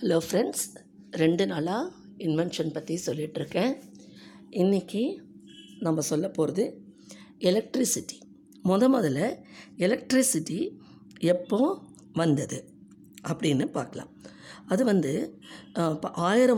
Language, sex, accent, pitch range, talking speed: Tamil, female, native, 165-225 Hz, 85 wpm